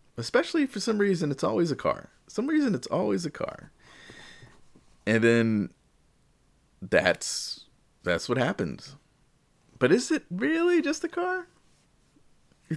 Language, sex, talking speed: English, male, 135 wpm